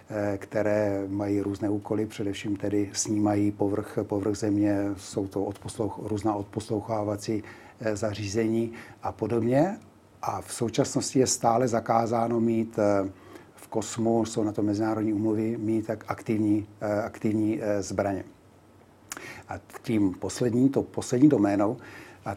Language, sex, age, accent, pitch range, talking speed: Czech, male, 60-79, native, 105-115 Hz, 120 wpm